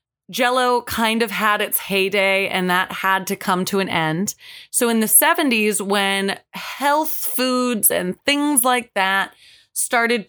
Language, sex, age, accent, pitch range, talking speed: English, female, 20-39, American, 190-250 Hz, 150 wpm